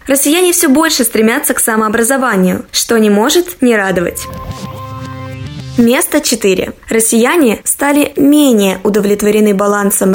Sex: female